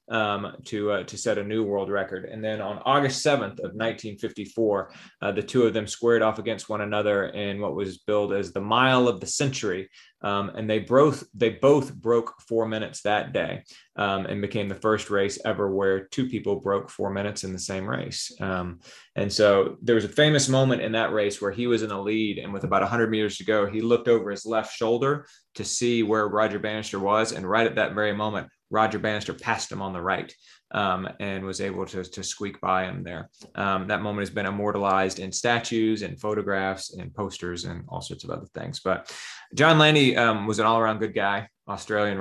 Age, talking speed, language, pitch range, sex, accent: 20-39, 215 wpm, English, 100-115 Hz, male, American